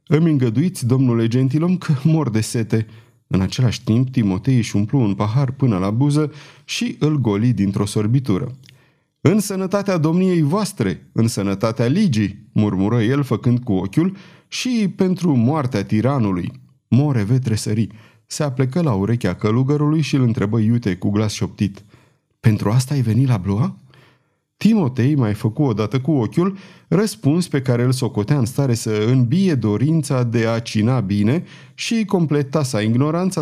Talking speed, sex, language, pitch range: 155 wpm, male, Romanian, 110-150 Hz